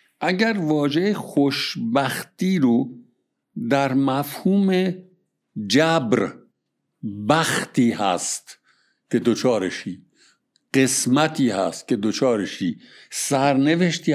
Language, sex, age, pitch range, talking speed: Persian, male, 60-79, 130-185 Hz, 70 wpm